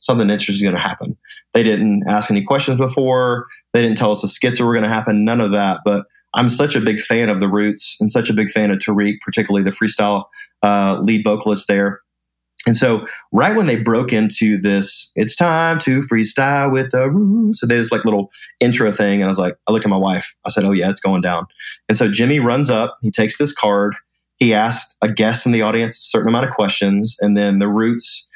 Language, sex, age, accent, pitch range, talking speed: English, male, 20-39, American, 100-125 Hz, 235 wpm